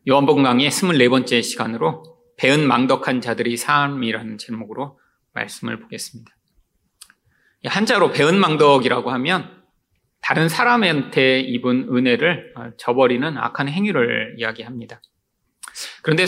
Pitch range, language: 125-185 Hz, Korean